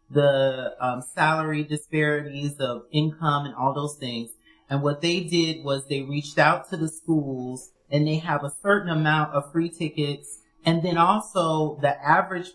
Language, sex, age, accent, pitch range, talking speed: English, male, 30-49, American, 140-175 Hz, 165 wpm